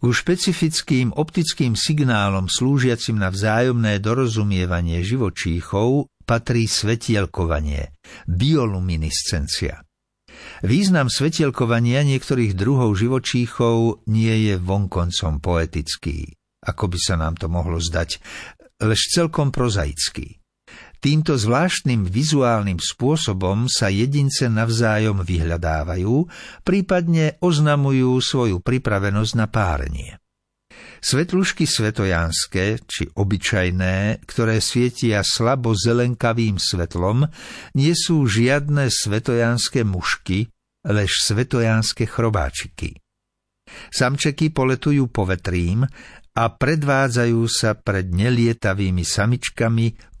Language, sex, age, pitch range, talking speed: Slovak, male, 60-79, 95-130 Hz, 85 wpm